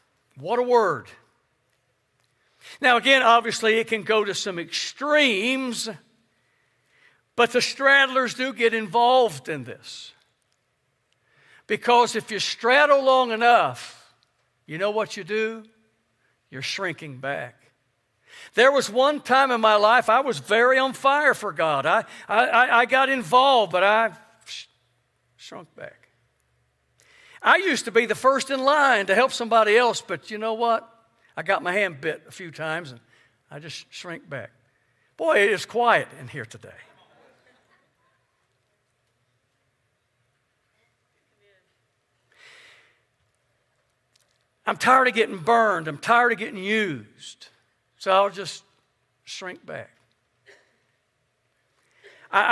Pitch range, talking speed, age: 175-255 Hz, 125 wpm, 60-79